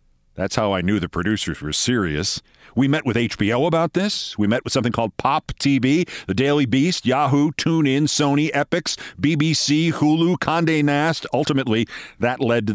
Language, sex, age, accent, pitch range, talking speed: English, male, 50-69, American, 120-155 Hz, 170 wpm